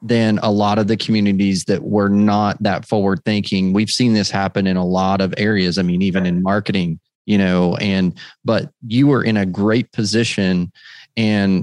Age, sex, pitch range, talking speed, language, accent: 30-49, male, 95-115 Hz, 190 wpm, English, American